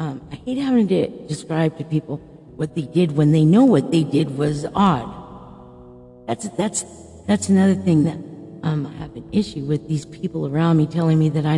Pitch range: 150-175 Hz